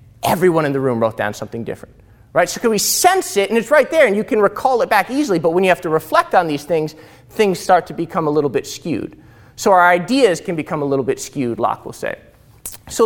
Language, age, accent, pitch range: English, 30-49, American, 155-220 Hz